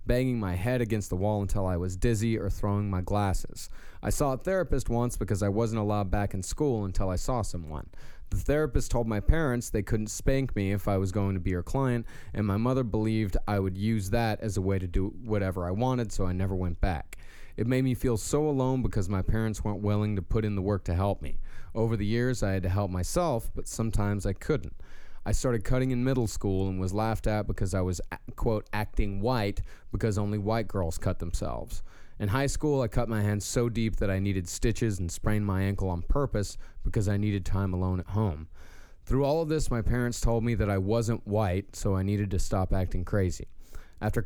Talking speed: 225 wpm